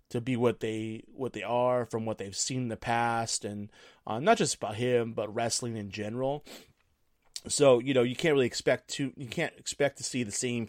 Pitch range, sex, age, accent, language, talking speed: 110-130 Hz, male, 30-49, American, English, 220 wpm